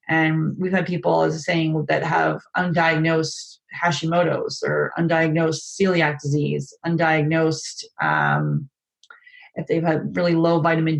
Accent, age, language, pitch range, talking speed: American, 30-49, English, 155-180 Hz, 130 wpm